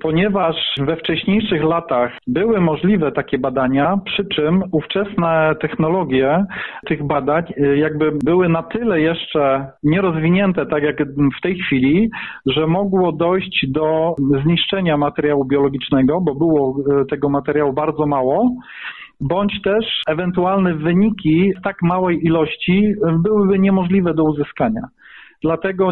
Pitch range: 145-180 Hz